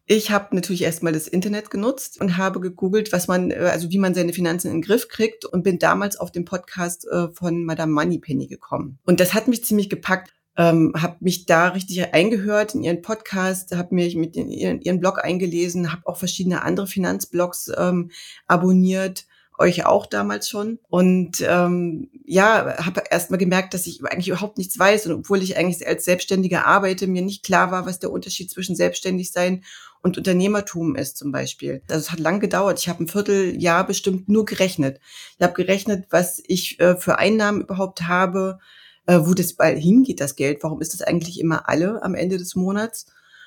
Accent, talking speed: German, 190 wpm